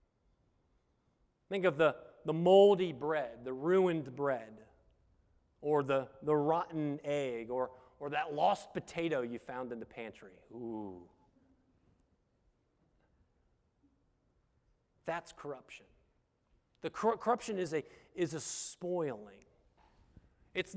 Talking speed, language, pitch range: 95 wpm, English, 155-225 Hz